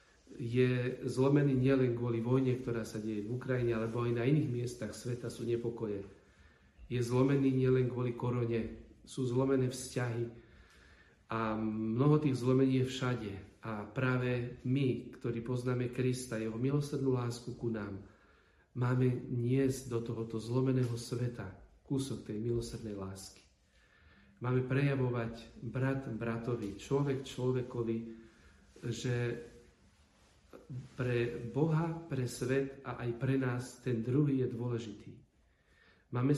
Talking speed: 120 wpm